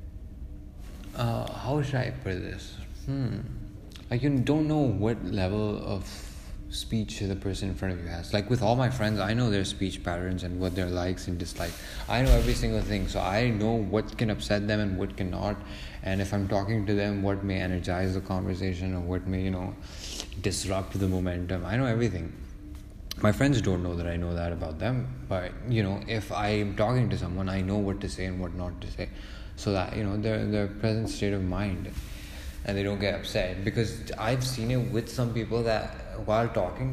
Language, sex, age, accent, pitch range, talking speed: English, male, 20-39, Indian, 90-110 Hz, 210 wpm